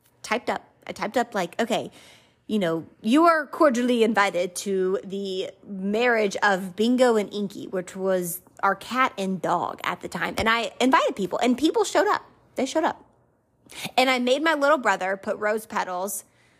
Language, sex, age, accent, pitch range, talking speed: English, female, 20-39, American, 190-230 Hz, 175 wpm